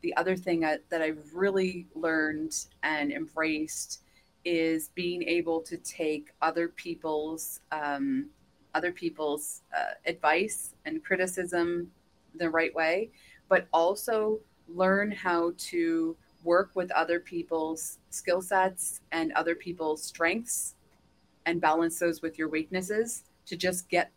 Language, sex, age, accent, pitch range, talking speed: English, female, 30-49, American, 155-185 Hz, 125 wpm